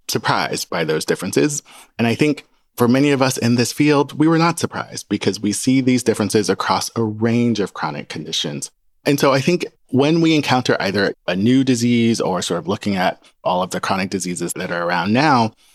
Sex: male